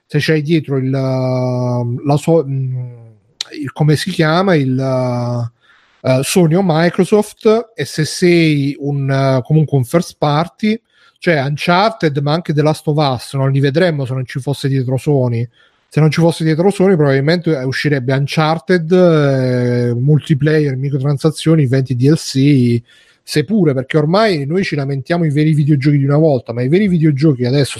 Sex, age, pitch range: male, 30-49, 135-160 Hz